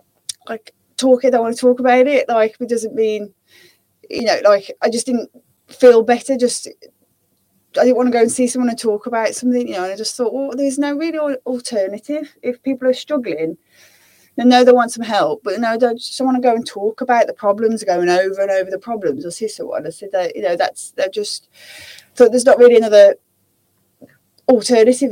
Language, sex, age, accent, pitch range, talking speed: English, female, 20-39, British, 195-250 Hz, 215 wpm